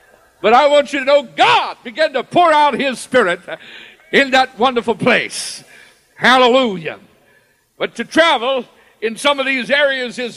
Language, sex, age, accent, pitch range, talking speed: English, male, 60-79, American, 210-255 Hz, 155 wpm